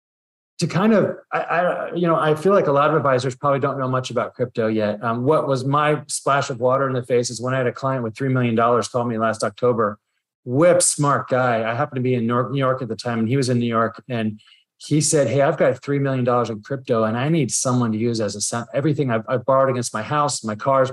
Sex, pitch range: male, 115-135 Hz